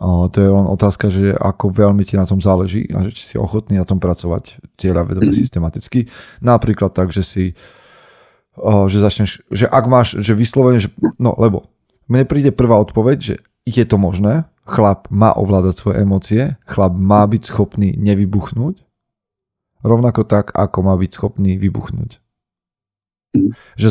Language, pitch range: Slovak, 95-110 Hz